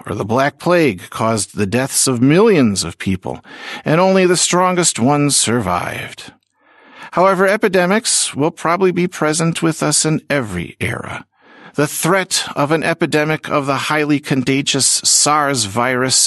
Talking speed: 145 wpm